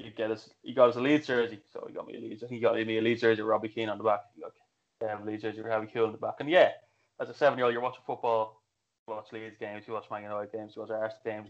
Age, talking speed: 20-39, 295 wpm